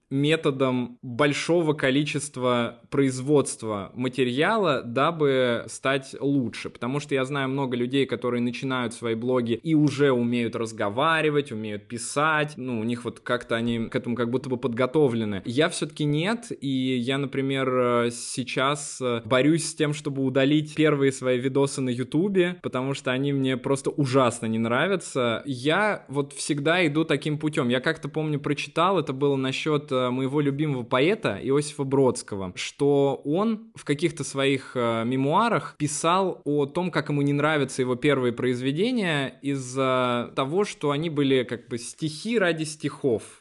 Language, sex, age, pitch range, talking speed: Russian, male, 20-39, 125-155 Hz, 145 wpm